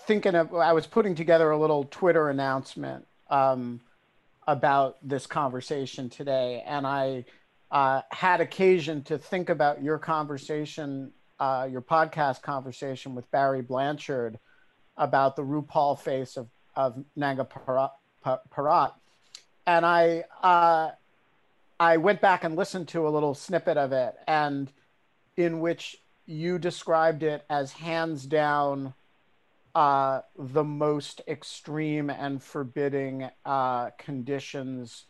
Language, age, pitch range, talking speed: English, 50-69, 135-165 Hz, 125 wpm